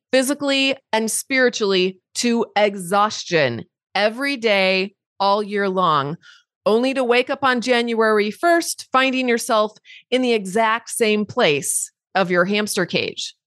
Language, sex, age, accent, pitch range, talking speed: English, female, 30-49, American, 190-245 Hz, 125 wpm